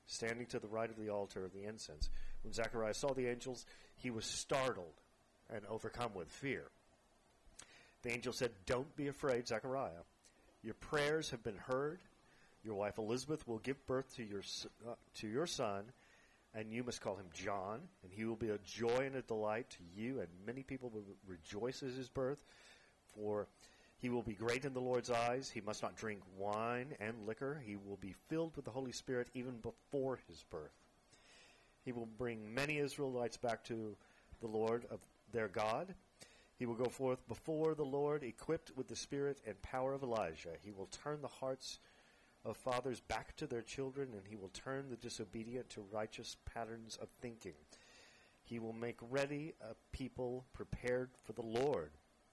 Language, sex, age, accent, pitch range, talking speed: English, male, 40-59, American, 110-130 Hz, 180 wpm